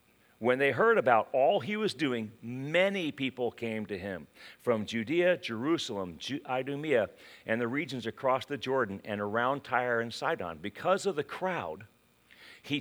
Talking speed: 155 wpm